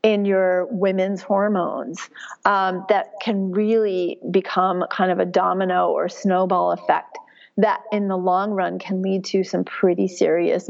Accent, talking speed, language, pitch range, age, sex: American, 150 wpm, English, 190-235 Hz, 40-59, female